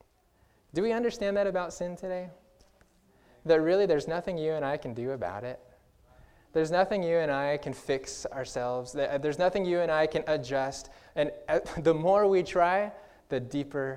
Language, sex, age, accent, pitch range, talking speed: English, male, 20-39, American, 130-170 Hz, 170 wpm